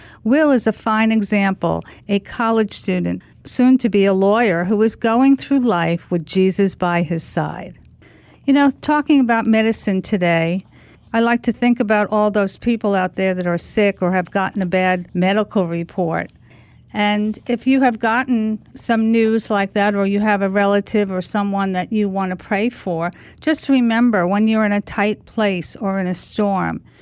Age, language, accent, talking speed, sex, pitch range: 50-69, English, American, 185 wpm, female, 190-230 Hz